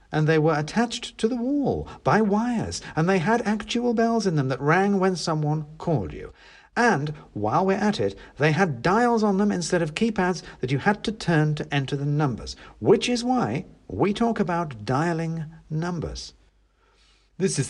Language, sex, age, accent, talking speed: English, male, 50-69, British, 185 wpm